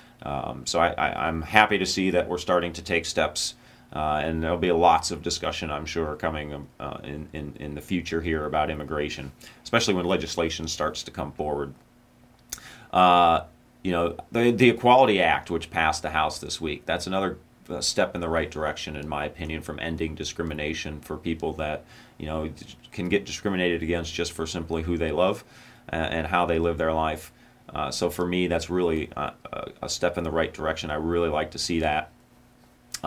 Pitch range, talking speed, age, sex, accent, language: 80-90 Hz, 195 wpm, 30-49, male, American, English